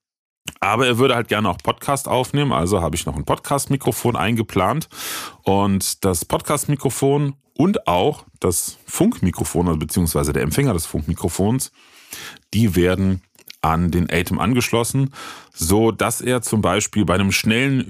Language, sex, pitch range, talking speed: German, male, 90-115 Hz, 135 wpm